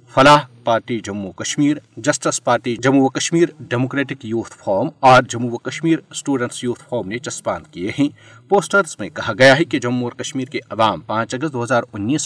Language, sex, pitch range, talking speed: Urdu, male, 115-140 Hz, 165 wpm